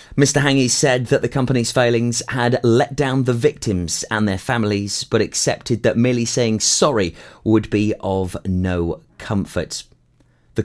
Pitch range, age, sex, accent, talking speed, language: 95-125 Hz, 30-49, male, British, 150 wpm, English